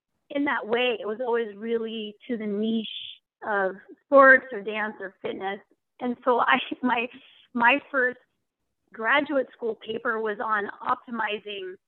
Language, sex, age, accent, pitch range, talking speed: English, female, 30-49, American, 215-275 Hz, 140 wpm